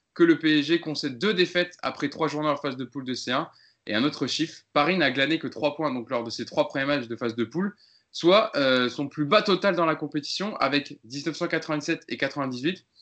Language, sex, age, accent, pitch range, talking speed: French, male, 20-39, French, 125-165 Hz, 225 wpm